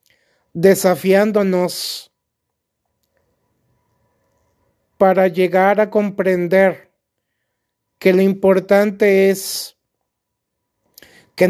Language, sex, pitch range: Spanish, male, 170-195 Hz